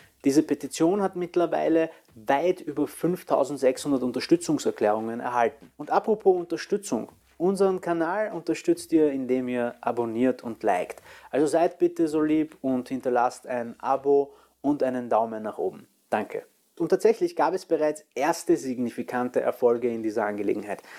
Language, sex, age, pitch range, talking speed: German, male, 30-49, 125-175 Hz, 135 wpm